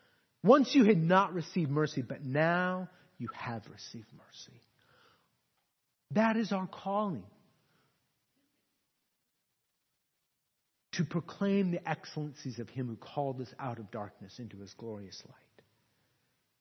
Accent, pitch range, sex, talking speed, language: American, 130-205 Hz, male, 115 wpm, English